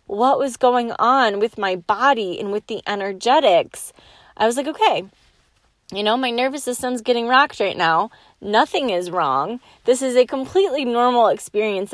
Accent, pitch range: American, 200-260 Hz